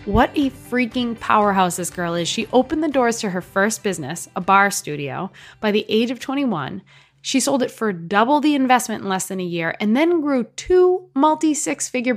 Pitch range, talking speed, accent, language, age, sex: 190-235 Hz, 195 wpm, American, English, 20-39, female